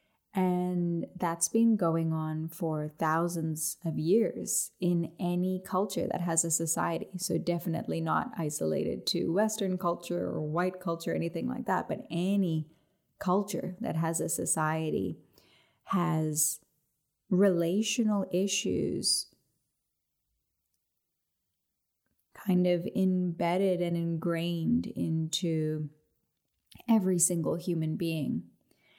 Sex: female